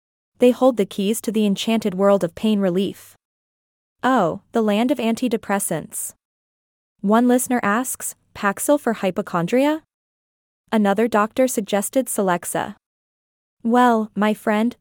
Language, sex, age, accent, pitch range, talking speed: English, female, 20-39, American, 200-245 Hz, 120 wpm